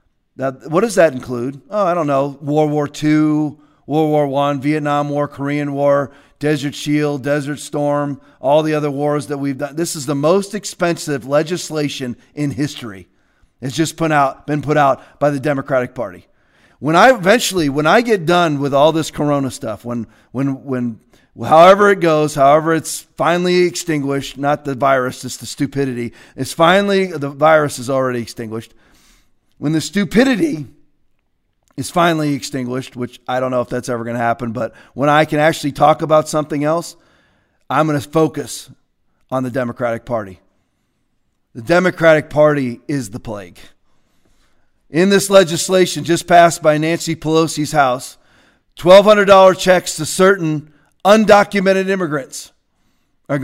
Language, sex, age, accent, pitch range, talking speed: English, male, 40-59, American, 135-160 Hz, 155 wpm